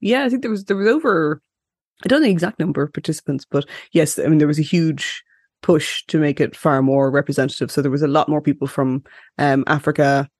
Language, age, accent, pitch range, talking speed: English, 20-39, Irish, 140-155 Hz, 235 wpm